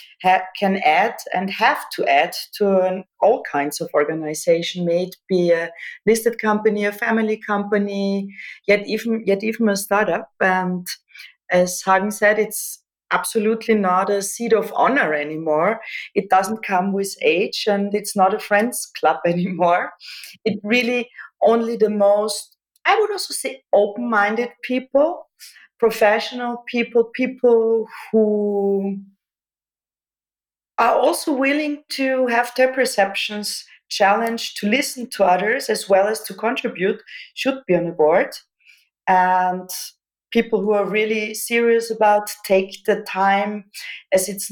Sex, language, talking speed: female, English, 135 wpm